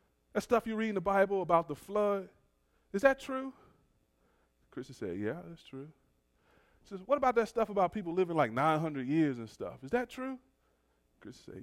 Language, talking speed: English, 190 wpm